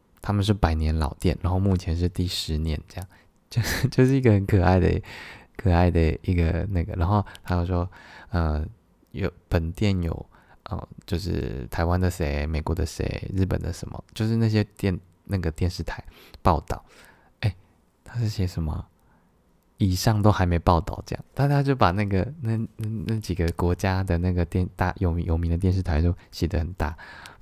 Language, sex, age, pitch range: Chinese, male, 20-39, 85-105 Hz